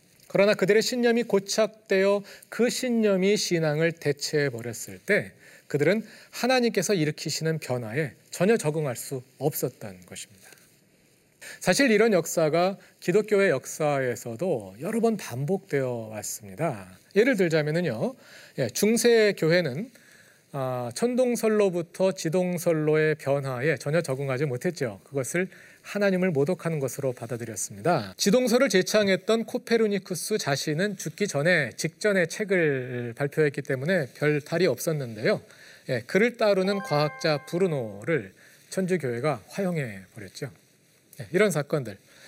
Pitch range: 140-200 Hz